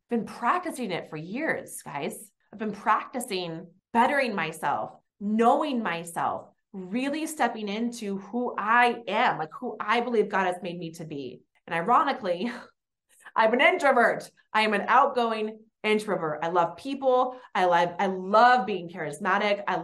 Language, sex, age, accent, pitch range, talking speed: English, female, 30-49, American, 175-230 Hz, 150 wpm